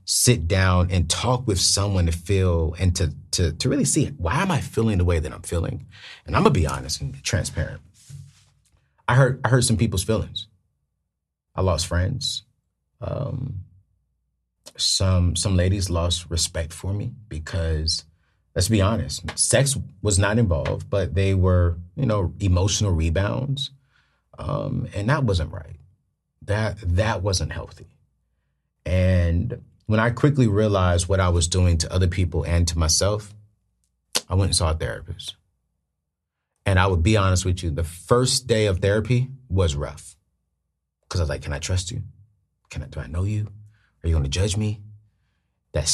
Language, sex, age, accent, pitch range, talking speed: English, male, 30-49, American, 85-110 Hz, 170 wpm